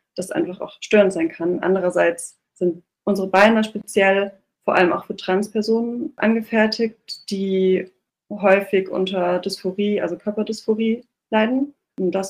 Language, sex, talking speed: German, female, 125 wpm